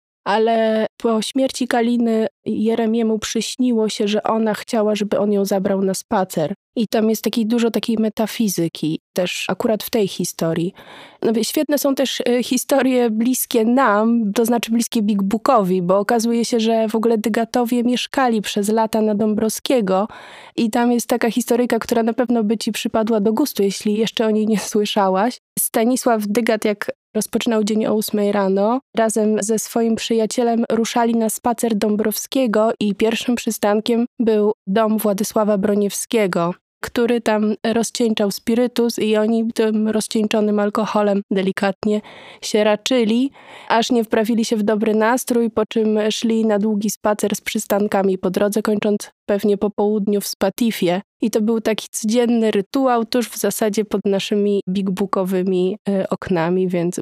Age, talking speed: 20-39, 150 wpm